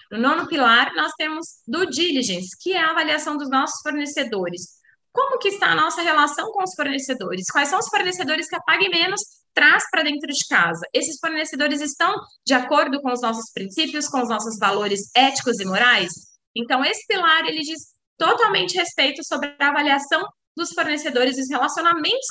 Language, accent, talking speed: Portuguese, Brazilian, 180 wpm